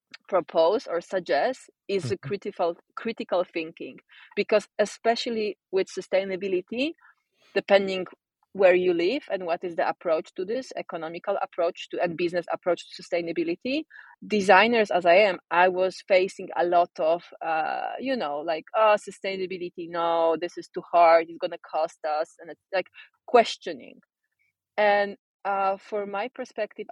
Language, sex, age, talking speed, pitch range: English, female, 30-49, 145 wpm, 175-220 Hz